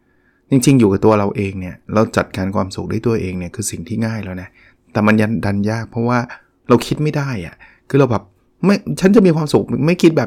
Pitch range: 100-135 Hz